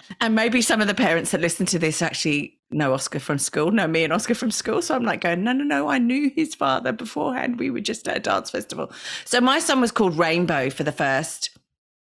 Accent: British